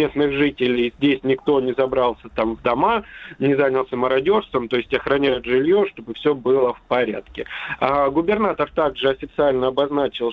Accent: native